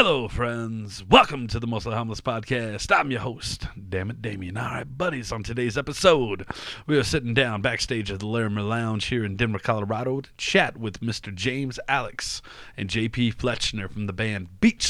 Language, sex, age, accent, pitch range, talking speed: English, male, 30-49, American, 105-125 Hz, 175 wpm